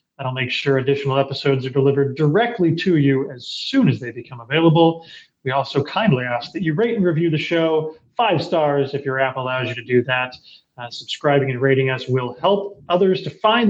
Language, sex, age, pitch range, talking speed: English, male, 30-49, 130-170 Hz, 205 wpm